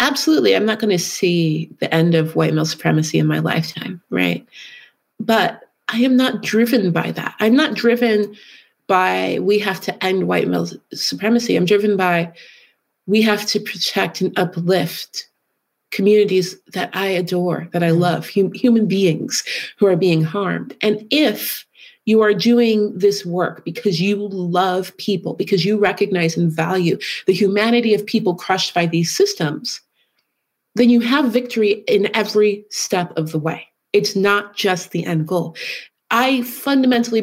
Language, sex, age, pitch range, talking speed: English, female, 30-49, 175-225 Hz, 160 wpm